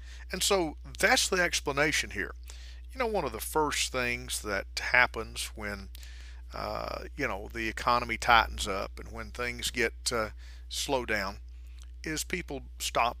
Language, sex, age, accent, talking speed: English, male, 50-69, American, 150 wpm